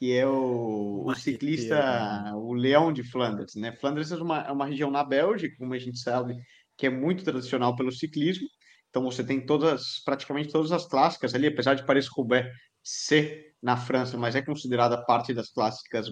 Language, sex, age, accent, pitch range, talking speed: Portuguese, male, 20-39, Brazilian, 125-155 Hz, 180 wpm